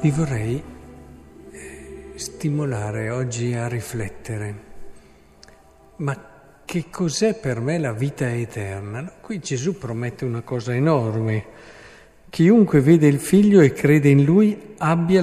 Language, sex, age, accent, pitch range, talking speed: Italian, male, 50-69, native, 115-155 Hz, 115 wpm